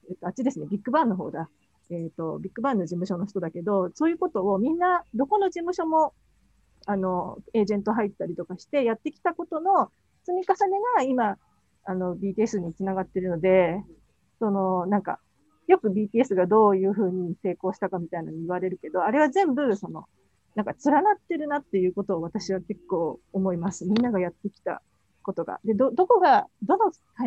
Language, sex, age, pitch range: Japanese, female, 40-59, 180-245 Hz